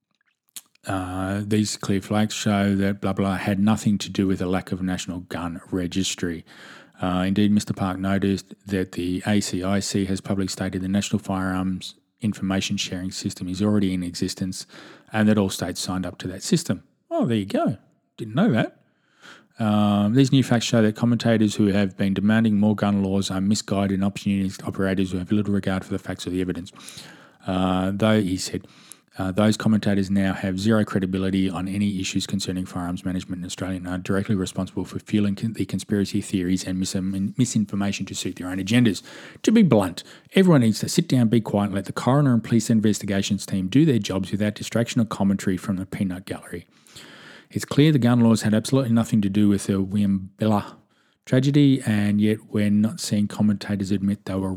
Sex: male